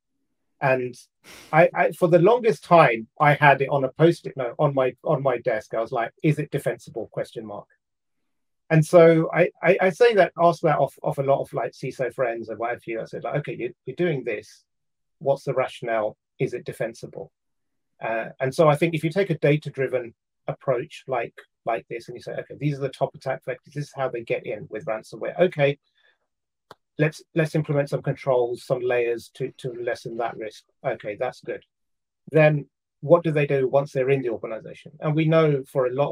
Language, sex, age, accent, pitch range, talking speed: English, male, 30-49, British, 125-160 Hz, 210 wpm